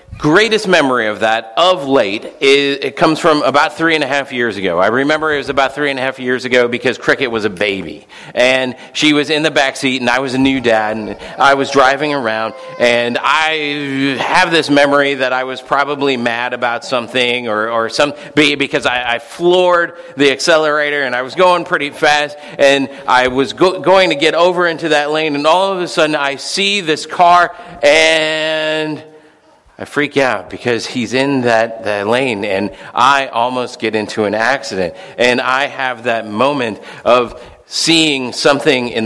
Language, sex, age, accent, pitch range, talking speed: English, male, 40-59, American, 115-150 Hz, 190 wpm